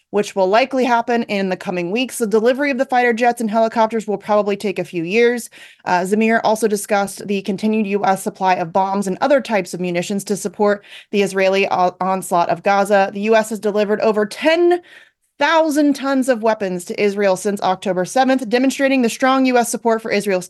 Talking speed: 195 wpm